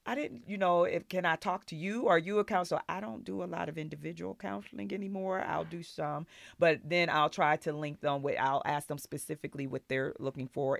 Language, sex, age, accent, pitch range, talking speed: English, female, 40-59, American, 135-155 Hz, 235 wpm